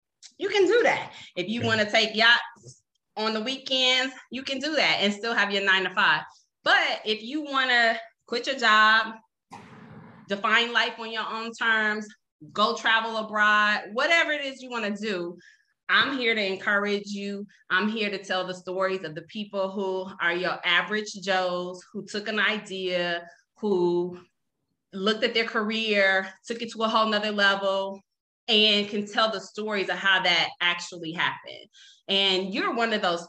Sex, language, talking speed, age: female, English, 175 wpm, 20-39